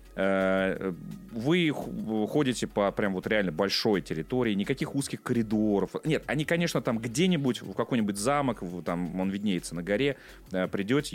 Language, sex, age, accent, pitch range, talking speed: Russian, male, 30-49, native, 95-140 Hz, 135 wpm